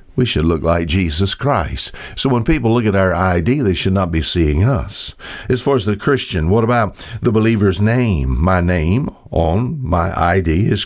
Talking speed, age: 195 wpm, 60-79